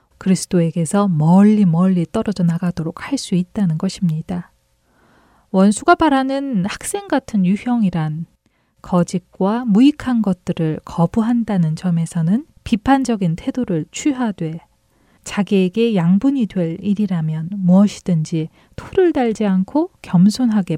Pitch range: 175-235 Hz